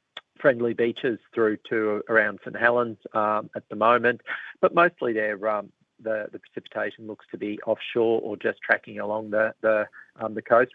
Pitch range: 100-110 Hz